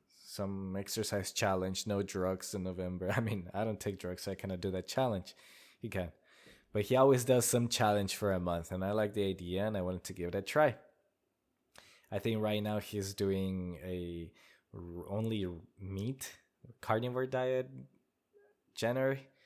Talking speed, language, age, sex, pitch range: 175 wpm, English, 20-39, male, 90-110 Hz